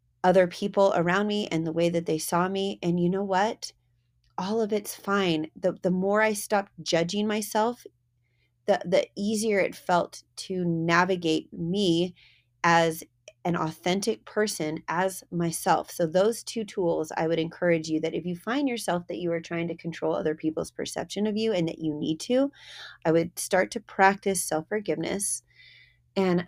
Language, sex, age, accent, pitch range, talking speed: English, female, 30-49, American, 155-195 Hz, 170 wpm